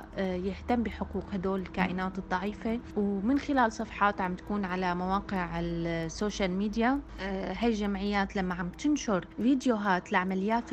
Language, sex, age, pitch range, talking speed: Arabic, female, 20-39, 185-225 Hz, 115 wpm